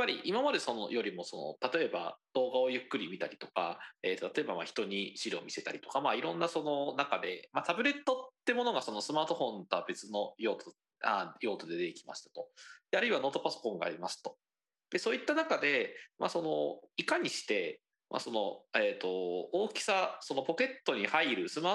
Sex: male